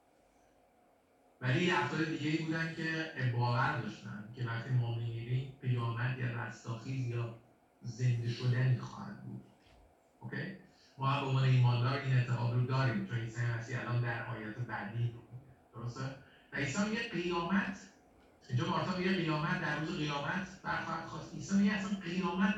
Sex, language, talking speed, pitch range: male, Persian, 120 wpm, 125-160 Hz